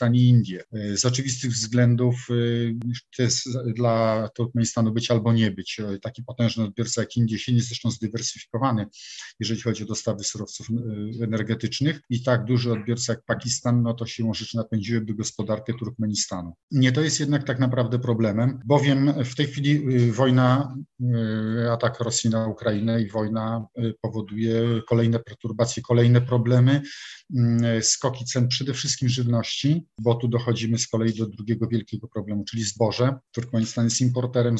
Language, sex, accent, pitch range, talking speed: Polish, male, native, 115-125 Hz, 145 wpm